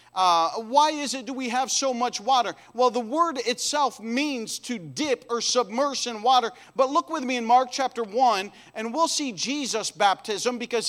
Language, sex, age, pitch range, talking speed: English, male, 40-59, 215-275 Hz, 195 wpm